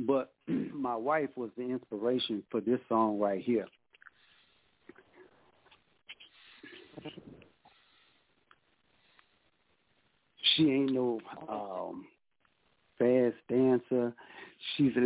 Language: English